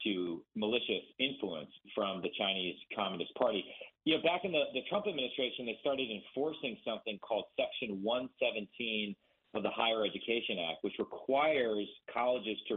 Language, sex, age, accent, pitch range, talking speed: English, male, 40-59, American, 110-155 Hz, 140 wpm